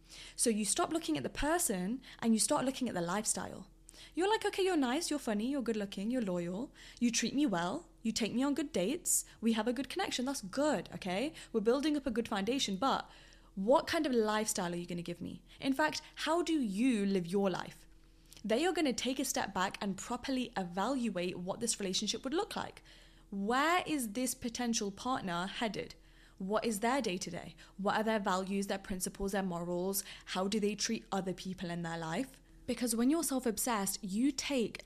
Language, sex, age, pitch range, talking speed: English, female, 10-29, 195-255 Hz, 200 wpm